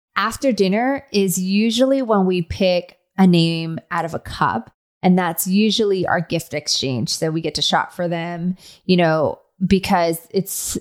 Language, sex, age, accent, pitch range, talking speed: English, female, 20-39, American, 170-200 Hz, 165 wpm